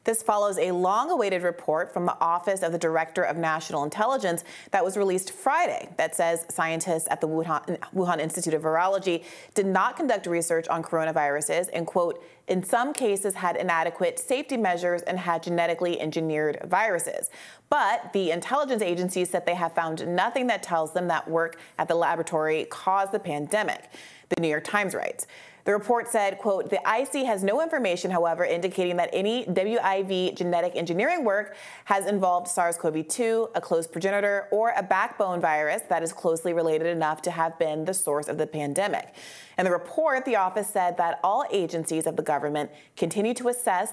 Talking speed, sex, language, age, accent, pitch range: 175 wpm, female, English, 30-49, American, 165-205 Hz